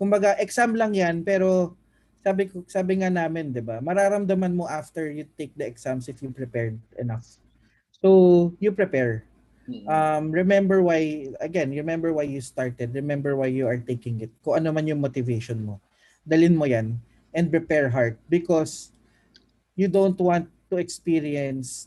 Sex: male